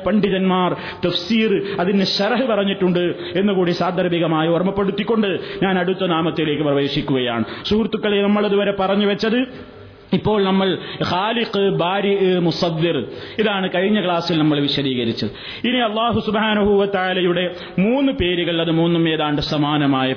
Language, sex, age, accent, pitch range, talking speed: Malayalam, male, 30-49, native, 155-220 Hz, 100 wpm